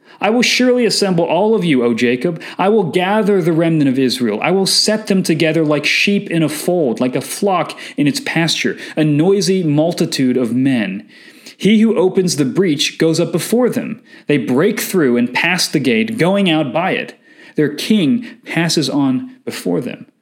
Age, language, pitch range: 30-49, English, 140-200 Hz